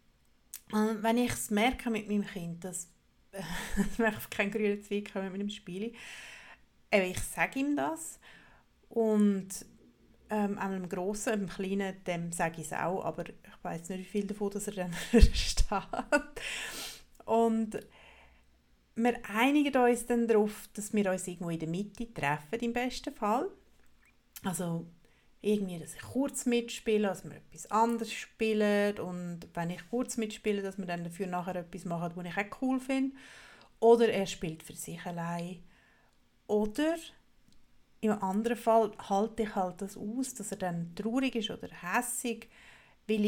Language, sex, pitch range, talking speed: German, female, 185-230 Hz, 155 wpm